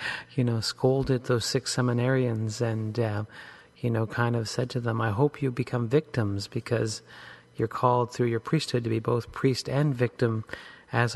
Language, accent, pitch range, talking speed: English, American, 110-130 Hz, 175 wpm